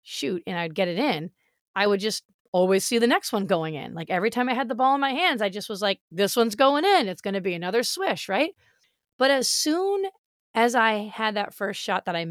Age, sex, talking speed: 30-49, female, 255 wpm